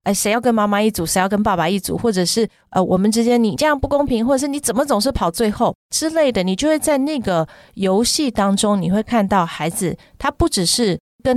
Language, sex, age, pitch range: Chinese, female, 30-49, 180-240 Hz